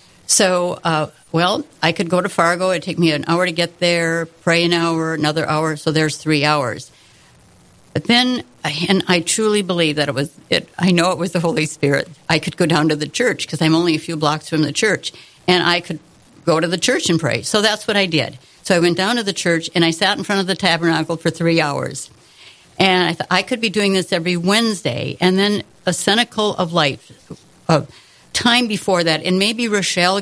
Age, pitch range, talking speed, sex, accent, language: 60-79, 160-190 Hz, 220 wpm, female, American, English